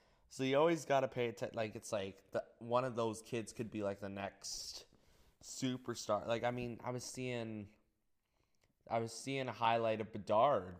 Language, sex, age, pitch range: English, male, 20-39, 110-125 Hz